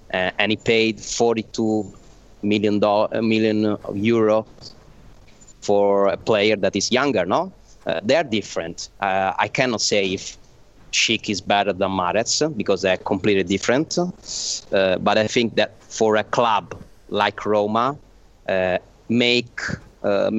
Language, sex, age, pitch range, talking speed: English, male, 30-49, 100-115 Hz, 145 wpm